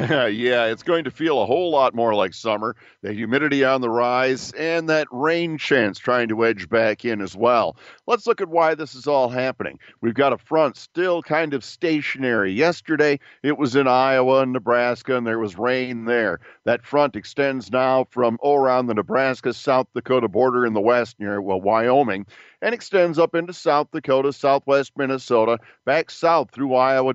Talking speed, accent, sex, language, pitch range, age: 185 wpm, American, male, English, 120-145 Hz, 50-69